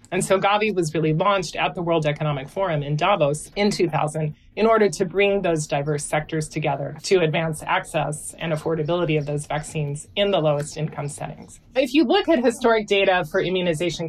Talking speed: 185 wpm